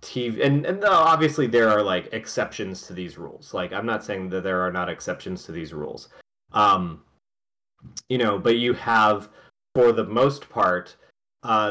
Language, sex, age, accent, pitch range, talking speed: English, male, 30-49, American, 95-120 Hz, 175 wpm